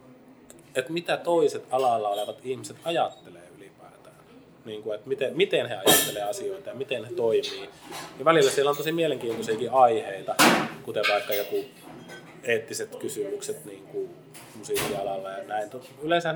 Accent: native